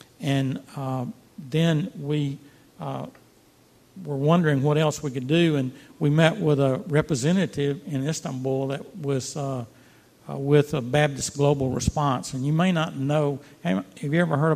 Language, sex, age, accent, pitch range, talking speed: English, male, 60-79, American, 135-160 Hz, 155 wpm